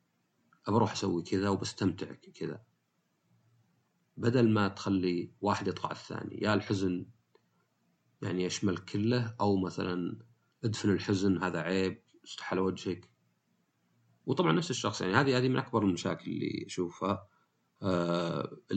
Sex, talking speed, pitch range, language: male, 120 wpm, 90-110 Hz, Arabic